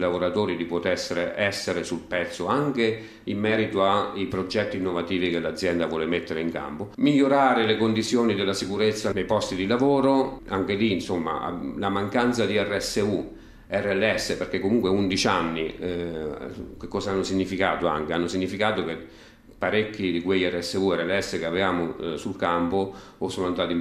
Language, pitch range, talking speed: Italian, 85-100 Hz, 160 wpm